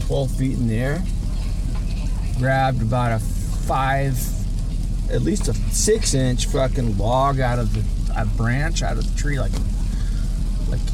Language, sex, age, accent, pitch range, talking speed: English, male, 30-49, American, 95-115 Hz, 150 wpm